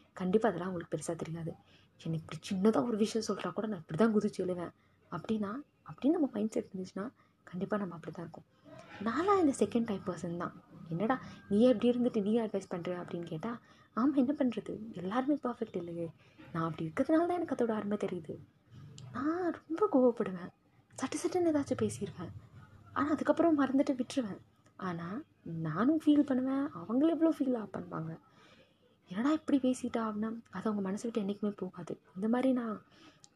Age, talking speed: 20-39, 155 wpm